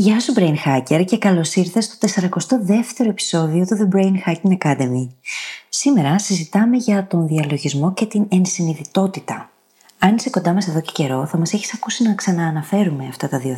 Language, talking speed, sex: Greek, 170 wpm, female